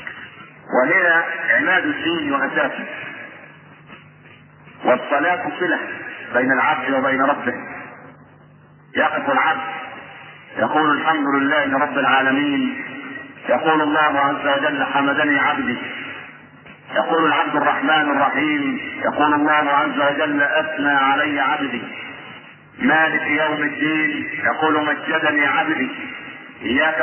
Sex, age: male, 50-69